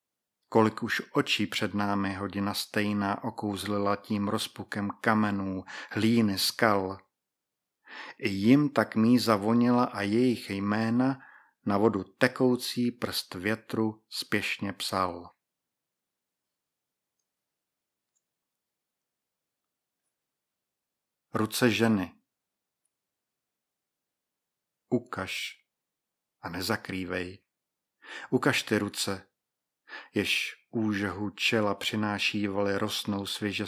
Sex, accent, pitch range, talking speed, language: male, native, 100-115 Hz, 75 wpm, Czech